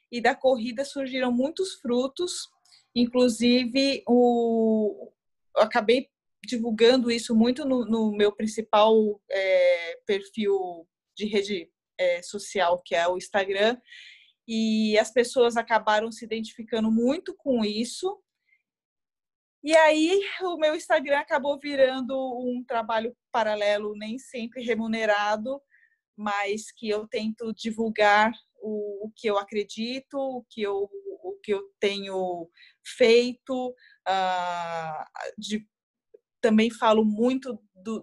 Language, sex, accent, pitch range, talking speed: Portuguese, female, Brazilian, 205-250 Hz, 110 wpm